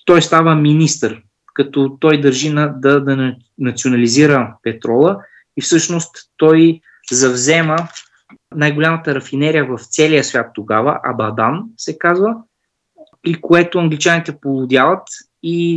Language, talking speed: Bulgarian, 110 wpm